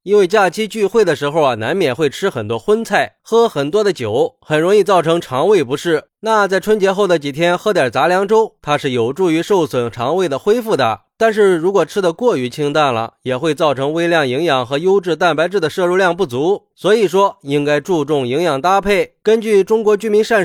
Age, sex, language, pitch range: 20-39, male, Chinese, 145-210 Hz